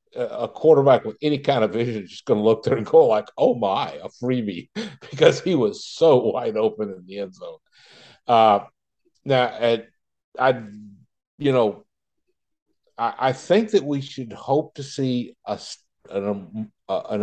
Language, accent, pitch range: English, American, 110-145 Hz